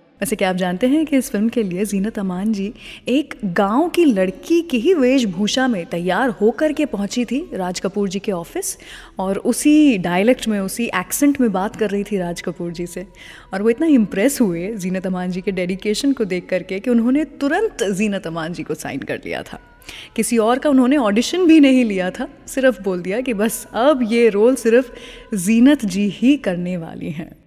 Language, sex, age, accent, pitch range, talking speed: English, female, 20-39, Indian, 200-270 Hz, 125 wpm